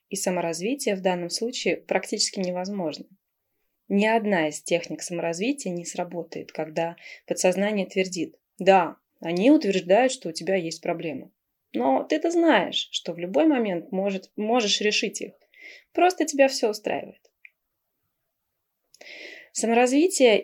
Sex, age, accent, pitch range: female, 20-39, native, 180-230 Hz